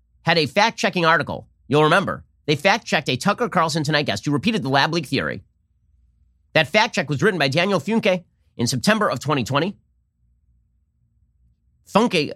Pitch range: 120-180 Hz